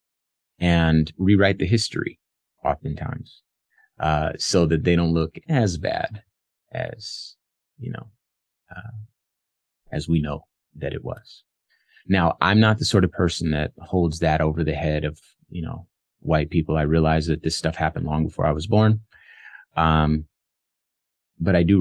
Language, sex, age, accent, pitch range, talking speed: English, male, 30-49, American, 80-105 Hz, 155 wpm